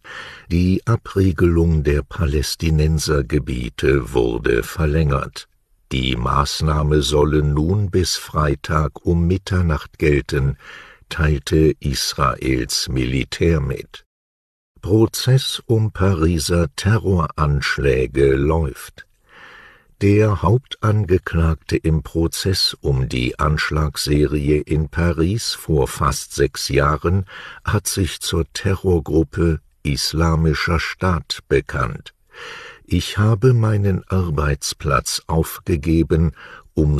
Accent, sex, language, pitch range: German, male, English, 75-90 Hz